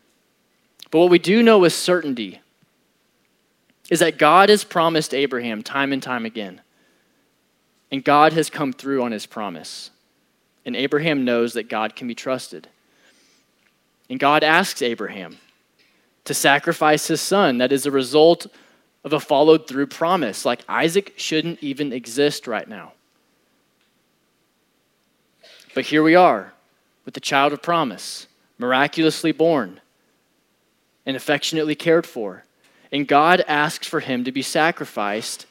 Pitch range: 135-170 Hz